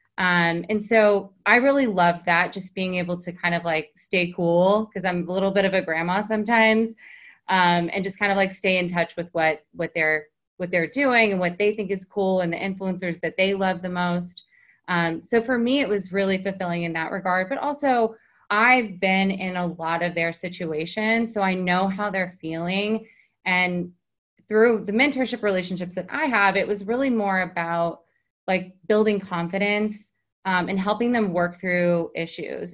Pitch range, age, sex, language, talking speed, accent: 175-210 Hz, 20-39, female, English, 190 wpm, American